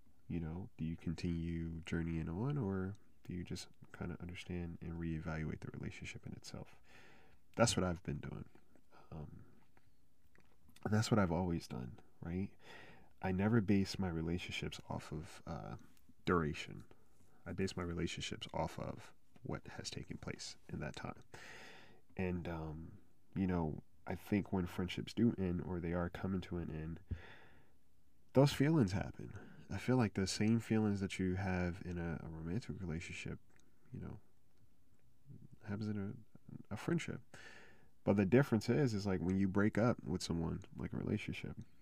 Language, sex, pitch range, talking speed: English, male, 85-105 Hz, 160 wpm